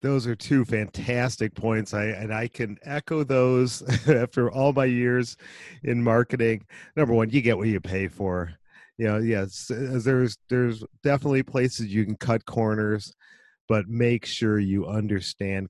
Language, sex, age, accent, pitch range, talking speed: English, male, 40-59, American, 105-135 Hz, 155 wpm